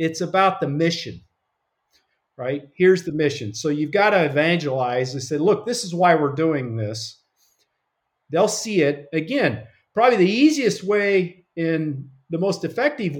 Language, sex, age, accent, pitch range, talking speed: English, male, 50-69, American, 135-175 Hz, 155 wpm